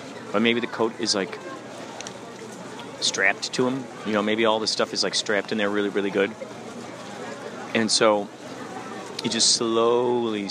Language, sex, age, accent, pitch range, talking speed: English, male, 40-59, American, 105-125 Hz, 160 wpm